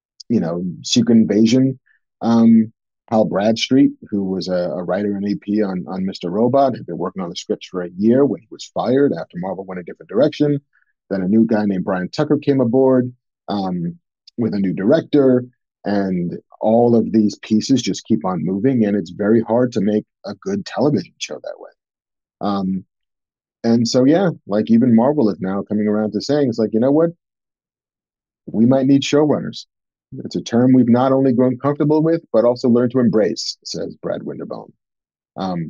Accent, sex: American, male